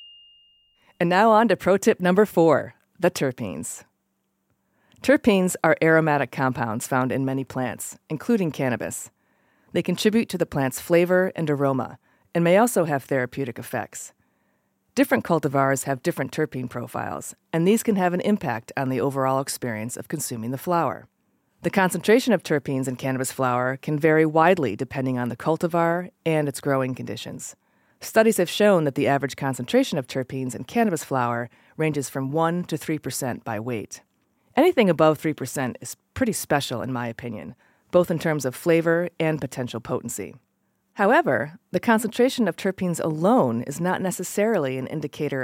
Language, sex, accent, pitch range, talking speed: English, female, American, 130-180 Hz, 155 wpm